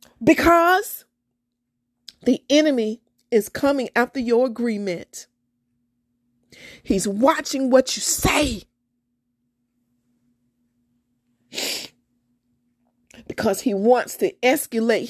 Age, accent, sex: 40-59, American, female